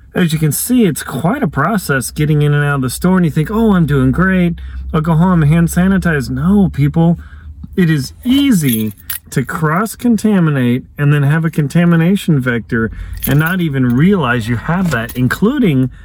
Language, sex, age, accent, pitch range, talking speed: English, male, 40-59, American, 125-170 Hz, 180 wpm